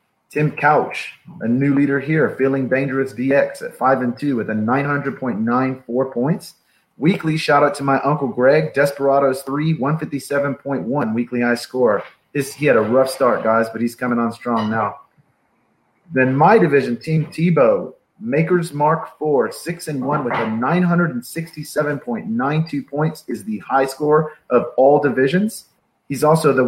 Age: 30-49